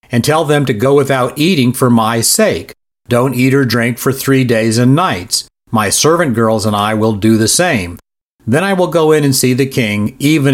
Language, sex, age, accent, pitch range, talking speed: English, male, 50-69, American, 115-145 Hz, 215 wpm